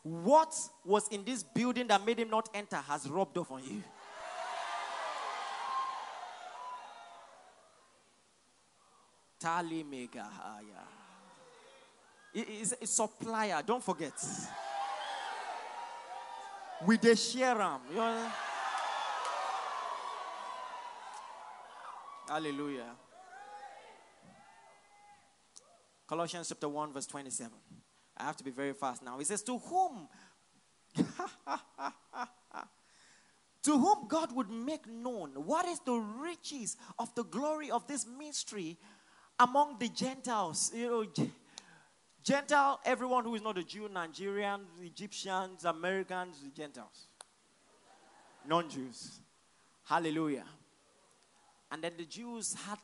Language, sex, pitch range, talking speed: English, male, 170-255 Hz, 95 wpm